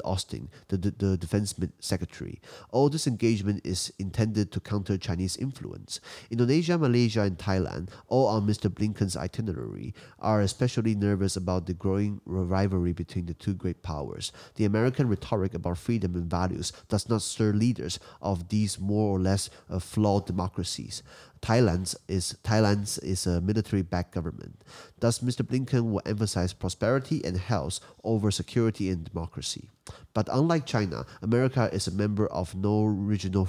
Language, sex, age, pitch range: Chinese, male, 30-49, 90-110 Hz